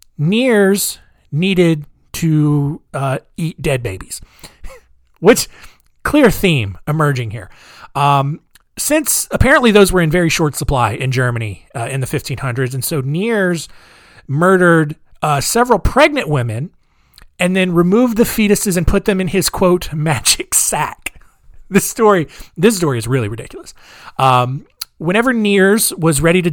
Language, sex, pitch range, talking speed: English, male, 135-180 Hz, 140 wpm